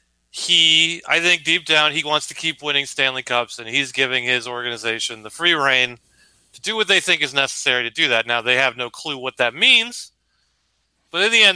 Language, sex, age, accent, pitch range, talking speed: English, male, 30-49, American, 120-180 Hz, 220 wpm